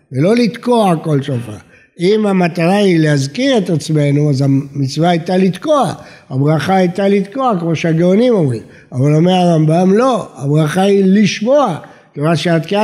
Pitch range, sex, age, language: 160-225 Hz, male, 60-79, Hebrew